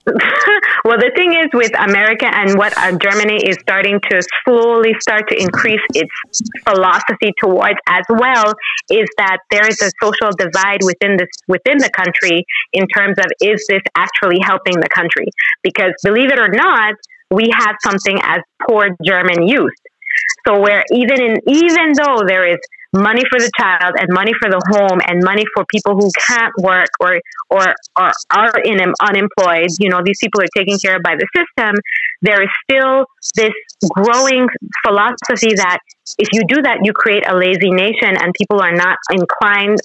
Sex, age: female, 30-49